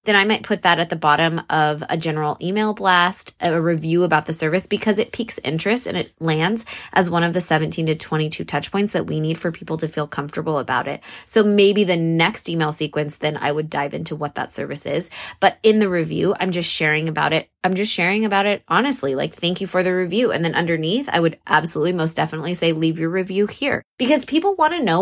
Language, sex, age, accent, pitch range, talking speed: English, female, 20-39, American, 165-225 Hz, 235 wpm